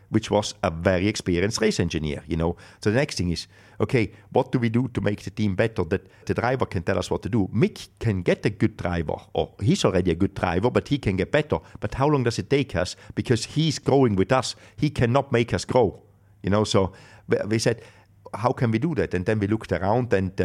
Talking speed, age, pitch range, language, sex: 245 wpm, 50-69, 95-110 Hz, English, male